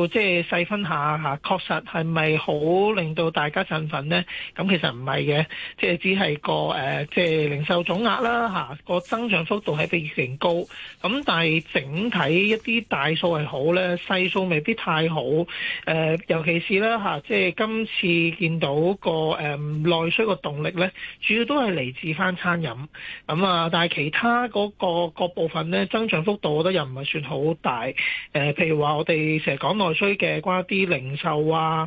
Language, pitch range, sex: Chinese, 155-190 Hz, male